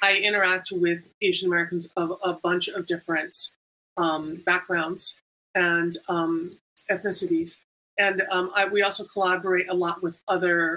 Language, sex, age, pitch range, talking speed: English, female, 30-49, 170-195 Hz, 140 wpm